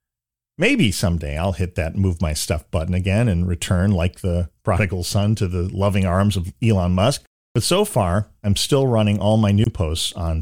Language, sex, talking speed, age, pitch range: English, male, 195 wpm, 40-59, 90-110 Hz